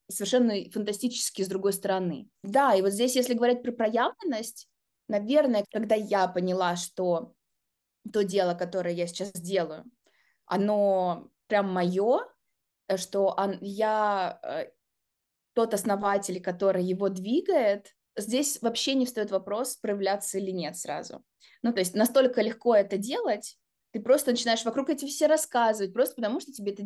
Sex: female